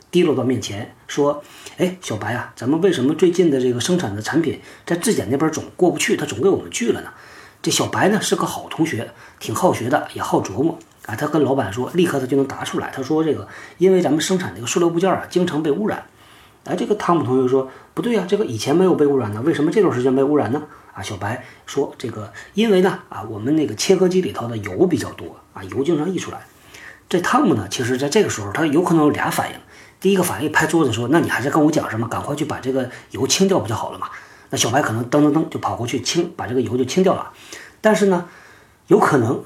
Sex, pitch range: male, 125-180 Hz